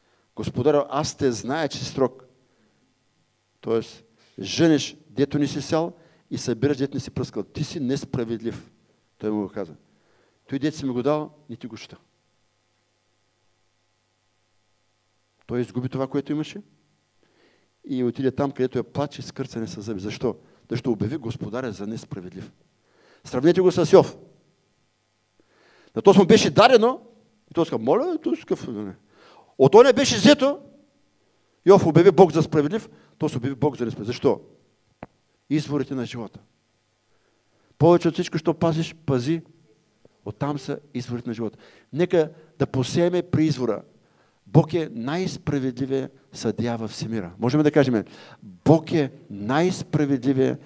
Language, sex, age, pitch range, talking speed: English, male, 50-69, 115-160 Hz, 135 wpm